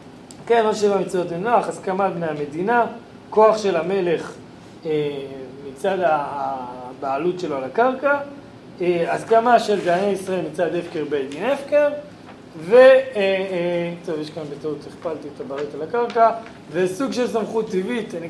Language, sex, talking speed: Hebrew, male, 140 wpm